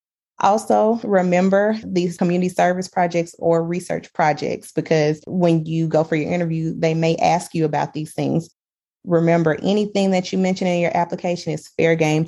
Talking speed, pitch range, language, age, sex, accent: 165 wpm, 155-180 Hz, English, 20-39, female, American